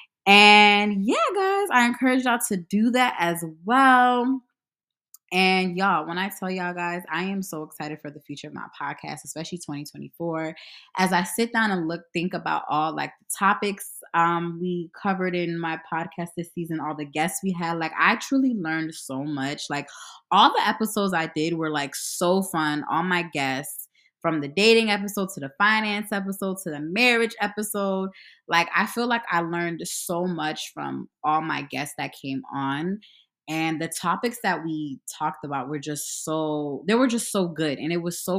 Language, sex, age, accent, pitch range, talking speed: English, female, 20-39, American, 155-205 Hz, 190 wpm